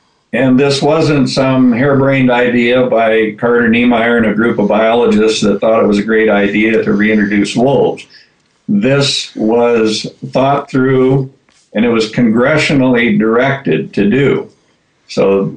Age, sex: 60-79, male